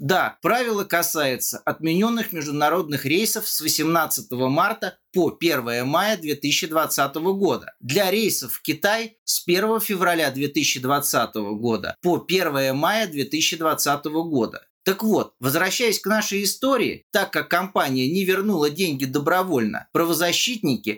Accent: native